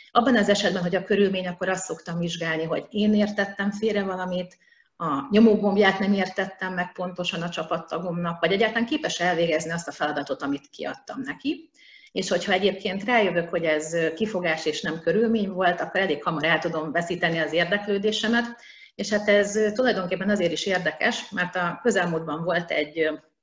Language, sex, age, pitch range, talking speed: Hungarian, female, 30-49, 170-210 Hz, 165 wpm